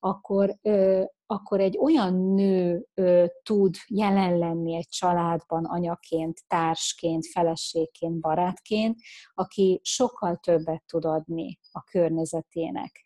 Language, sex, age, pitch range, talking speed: Hungarian, female, 30-49, 170-195 Hz, 95 wpm